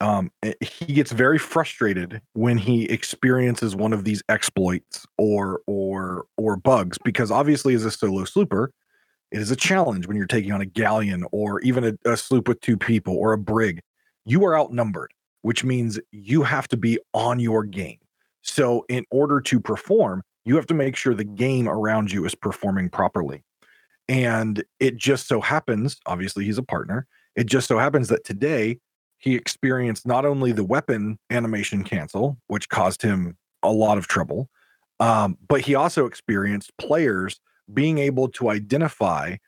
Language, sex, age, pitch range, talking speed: English, male, 40-59, 105-125 Hz, 170 wpm